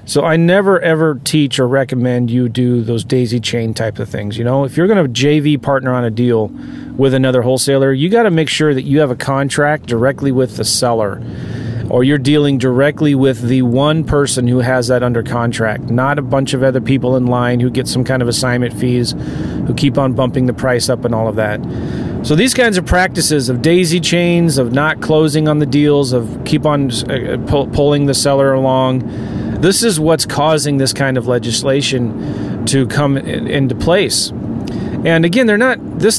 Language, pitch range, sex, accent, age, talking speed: English, 125-155 Hz, male, American, 30-49, 200 wpm